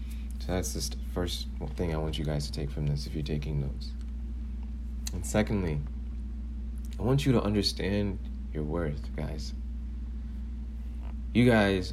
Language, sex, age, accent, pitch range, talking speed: English, male, 30-49, American, 70-95 Hz, 145 wpm